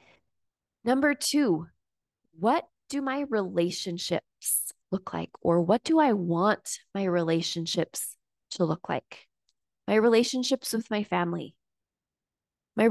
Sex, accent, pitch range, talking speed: female, American, 190-240 Hz, 110 wpm